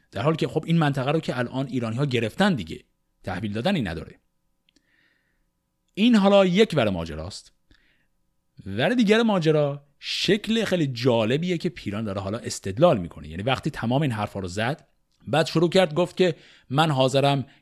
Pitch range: 115-170 Hz